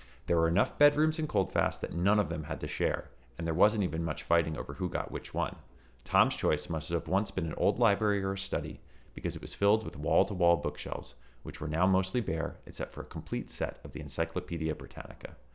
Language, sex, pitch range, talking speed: English, male, 75-105 Hz, 220 wpm